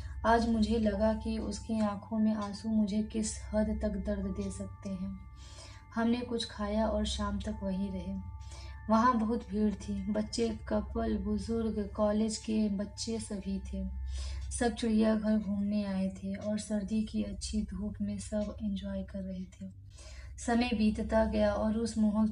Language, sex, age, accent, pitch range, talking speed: Hindi, female, 20-39, native, 195-225 Hz, 155 wpm